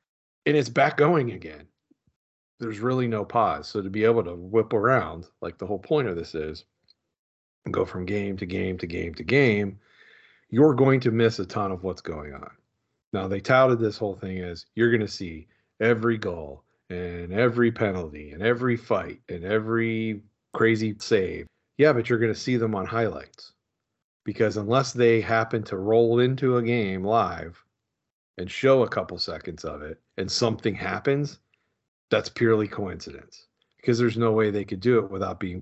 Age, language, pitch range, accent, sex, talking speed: 40-59, English, 95-120 Hz, American, male, 180 wpm